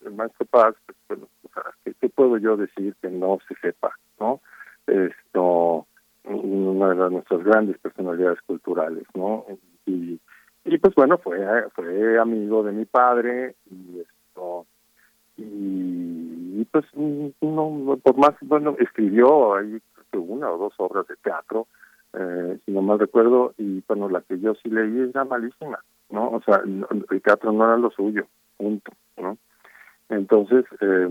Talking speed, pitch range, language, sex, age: 155 wpm, 90-115 Hz, Spanish, male, 50-69